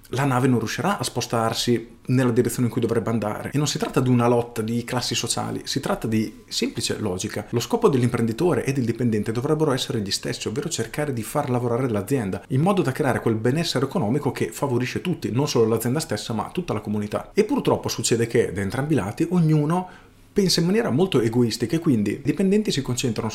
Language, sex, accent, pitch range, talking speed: Italian, male, native, 110-140 Hz, 210 wpm